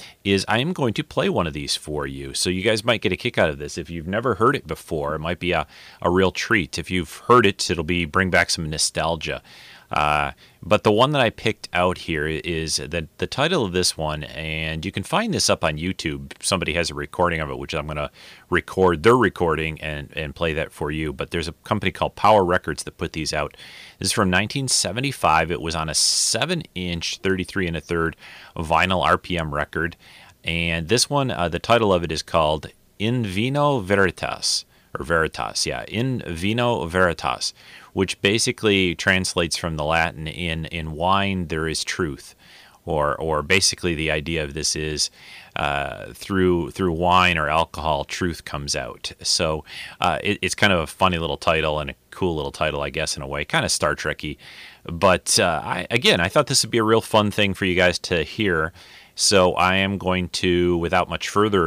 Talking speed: 205 wpm